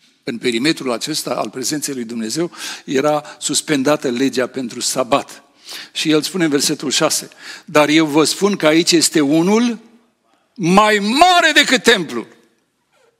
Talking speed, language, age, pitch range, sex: 135 wpm, Romanian, 60-79, 140-200 Hz, male